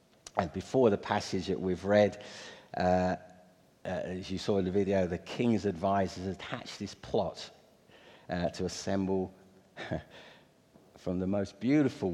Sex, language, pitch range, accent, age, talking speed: male, English, 90-110 Hz, British, 50-69, 140 wpm